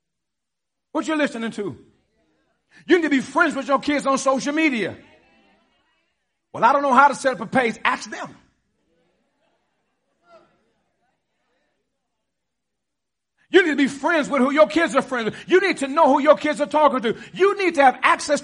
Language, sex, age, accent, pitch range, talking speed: English, male, 50-69, American, 235-315 Hz, 175 wpm